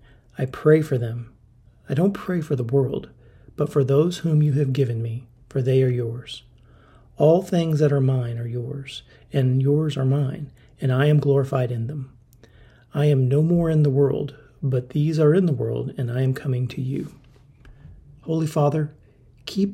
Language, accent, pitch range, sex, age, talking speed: English, American, 125-150 Hz, male, 40-59, 185 wpm